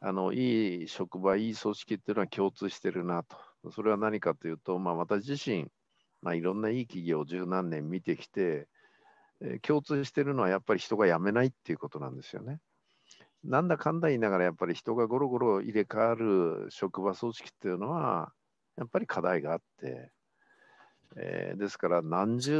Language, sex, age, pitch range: Japanese, male, 50-69, 85-120 Hz